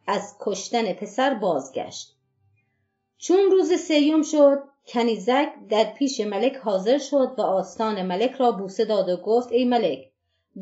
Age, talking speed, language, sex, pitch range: 30-49, 135 wpm, Persian, female, 190-250 Hz